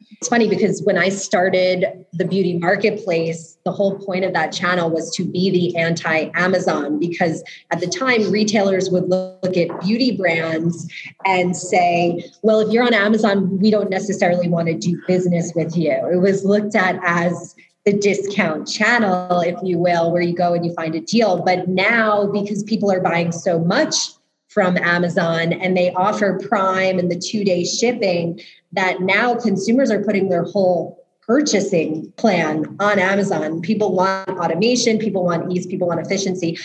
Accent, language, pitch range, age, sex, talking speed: American, English, 170-200 Hz, 20-39, female, 170 wpm